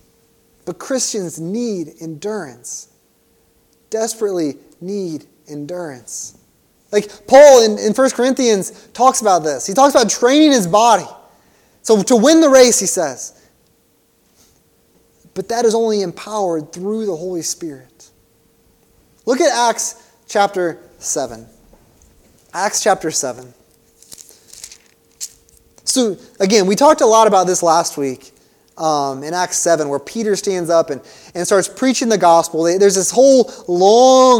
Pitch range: 185-255 Hz